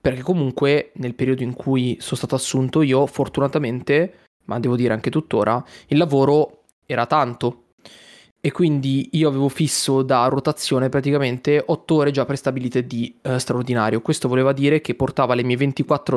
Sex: male